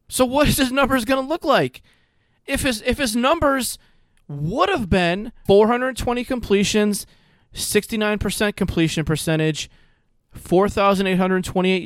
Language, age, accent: English, 30-49, American